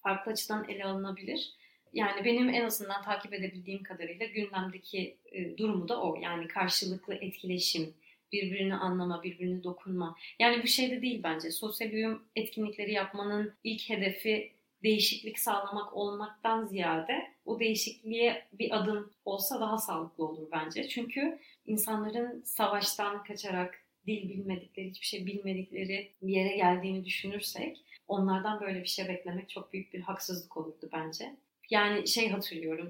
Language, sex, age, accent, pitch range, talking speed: Turkish, female, 30-49, native, 185-220 Hz, 135 wpm